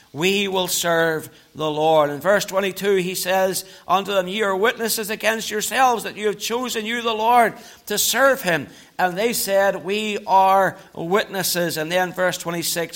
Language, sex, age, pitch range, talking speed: English, male, 60-79, 190-270 Hz, 170 wpm